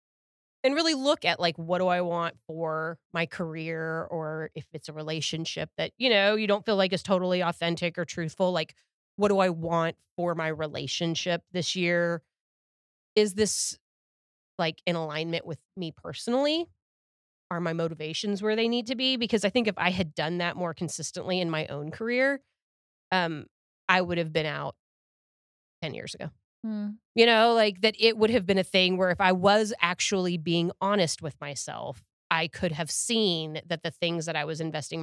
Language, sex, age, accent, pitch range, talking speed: English, female, 30-49, American, 160-190 Hz, 185 wpm